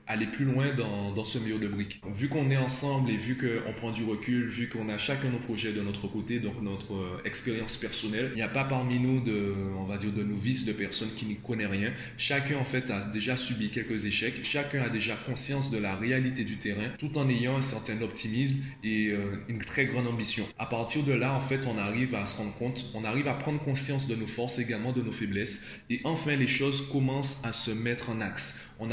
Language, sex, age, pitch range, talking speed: French, male, 20-39, 105-130 Hz, 240 wpm